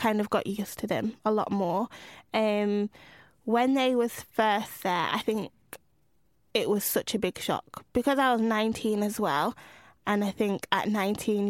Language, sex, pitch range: English, female, 185-215 Hz